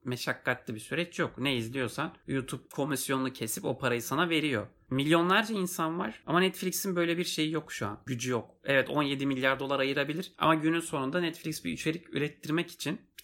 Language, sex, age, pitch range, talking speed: Turkish, male, 30-49, 125-160 Hz, 180 wpm